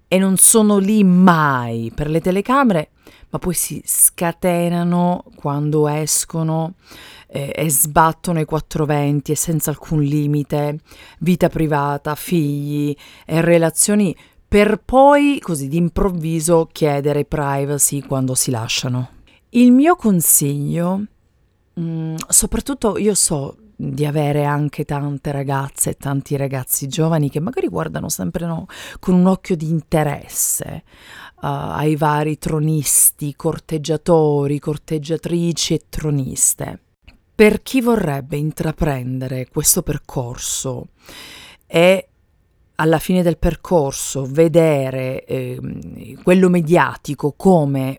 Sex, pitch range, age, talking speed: female, 145-175 Hz, 40-59, 110 wpm